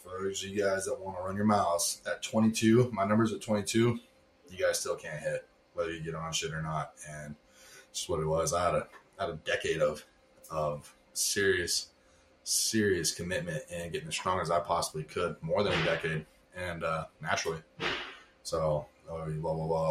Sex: male